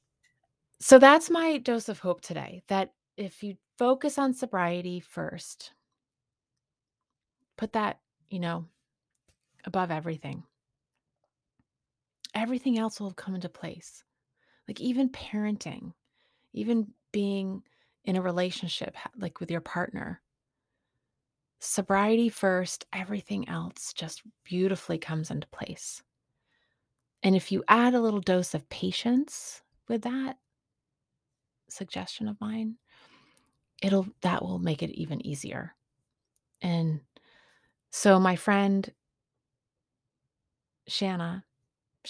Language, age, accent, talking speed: English, 30-49, American, 105 wpm